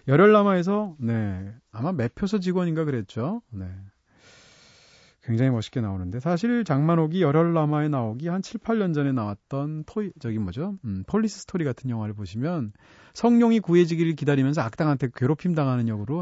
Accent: native